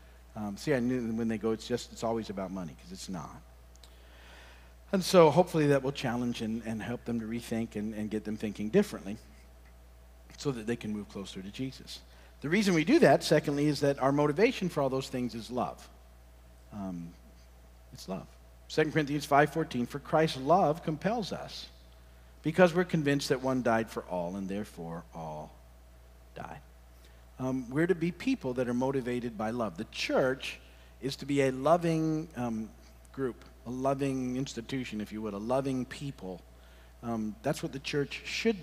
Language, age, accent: English, 50-69, American